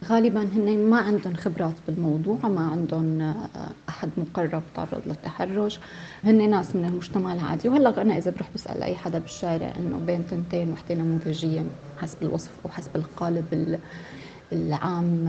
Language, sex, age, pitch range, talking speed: Arabic, female, 20-39, 170-210 Hz, 135 wpm